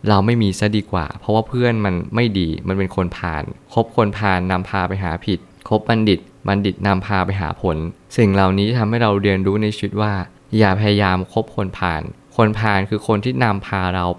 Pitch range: 95-110 Hz